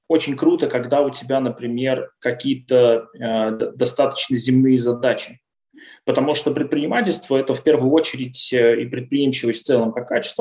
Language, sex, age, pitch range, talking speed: Russian, male, 20-39, 130-155 Hz, 135 wpm